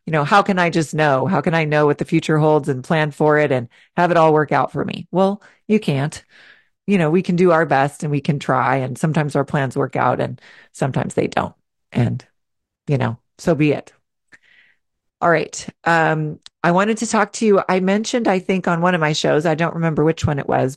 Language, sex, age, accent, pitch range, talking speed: English, female, 40-59, American, 150-185 Hz, 235 wpm